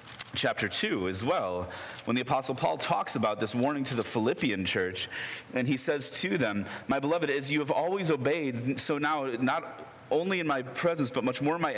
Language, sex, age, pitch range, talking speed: English, male, 30-49, 105-140 Hz, 205 wpm